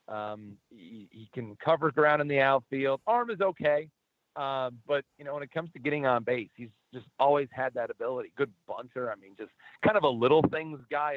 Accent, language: American, English